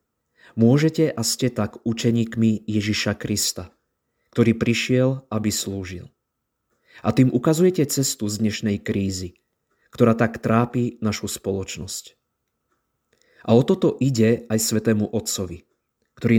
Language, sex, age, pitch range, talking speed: Slovak, male, 20-39, 105-120 Hz, 115 wpm